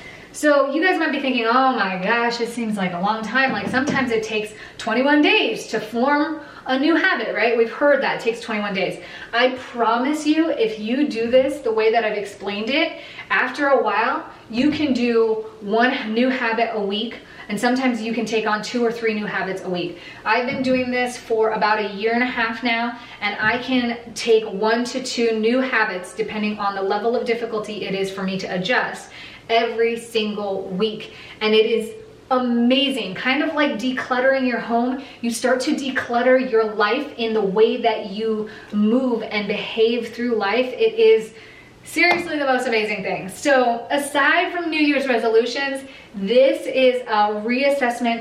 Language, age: English, 30-49